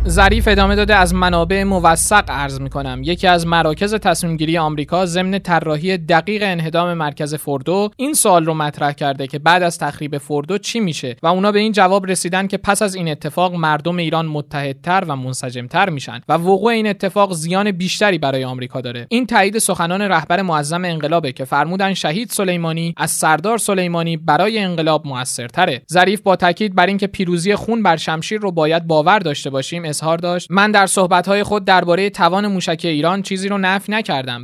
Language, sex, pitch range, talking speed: Persian, male, 150-195 Hz, 180 wpm